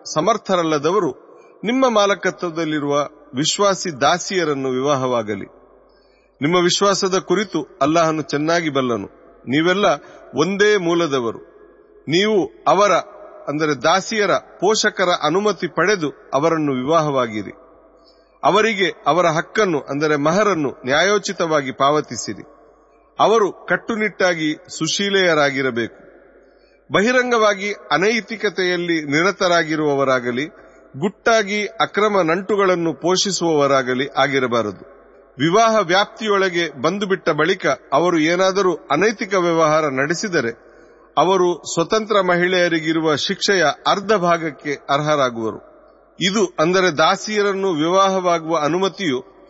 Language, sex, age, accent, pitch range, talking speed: Kannada, male, 40-59, native, 150-200 Hz, 75 wpm